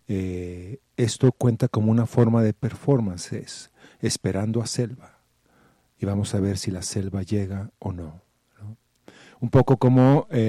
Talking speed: 145 wpm